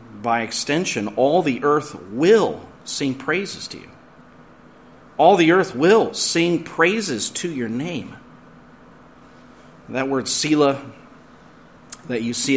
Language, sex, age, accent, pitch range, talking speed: English, male, 40-59, American, 110-130 Hz, 120 wpm